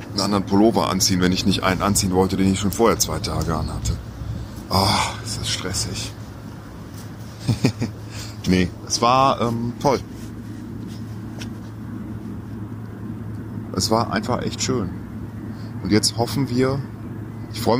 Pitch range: 95-115 Hz